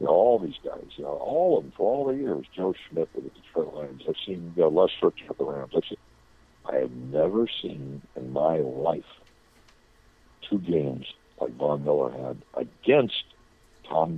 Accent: American